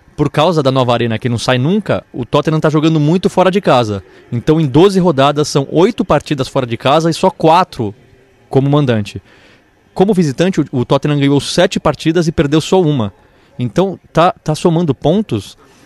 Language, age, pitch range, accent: Portuguese, 20-39, 130-170 Hz, Brazilian